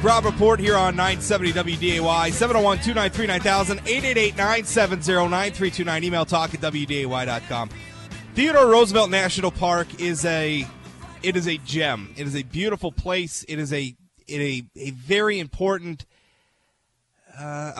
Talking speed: 130 wpm